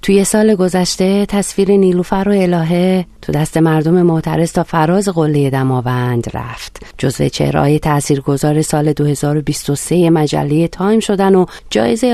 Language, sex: Persian, female